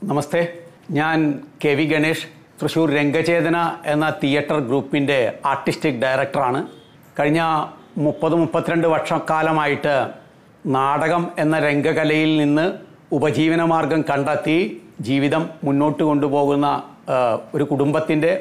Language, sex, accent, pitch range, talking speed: Malayalam, male, native, 145-165 Hz, 90 wpm